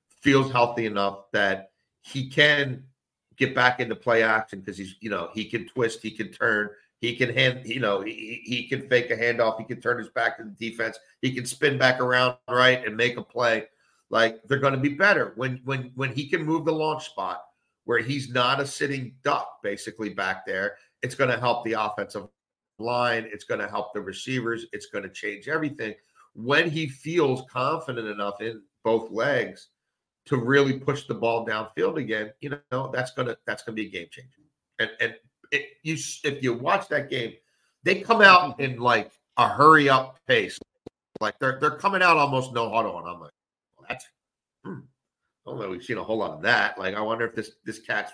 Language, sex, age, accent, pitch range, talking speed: English, male, 50-69, American, 110-140 Hz, 210 wpm